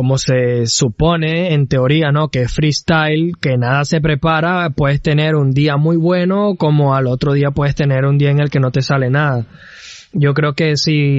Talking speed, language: 205 wpm, Spanish